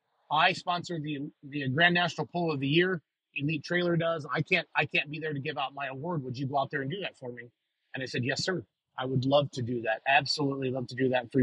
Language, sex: English, male